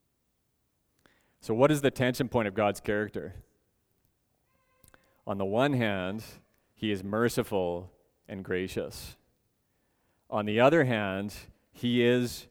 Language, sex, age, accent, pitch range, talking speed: English, male, 30-49, American, 105-130 Hz, 115 wpm